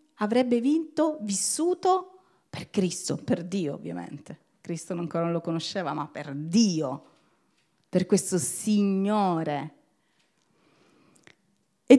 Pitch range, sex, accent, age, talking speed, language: 165-215 Hz, female, native, 30-49, 100 wpm, Italian